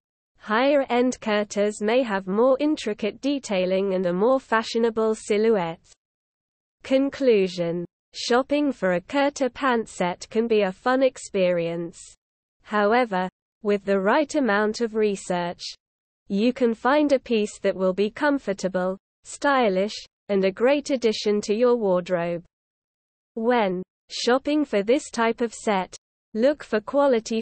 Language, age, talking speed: English, 20-39, 125 wpm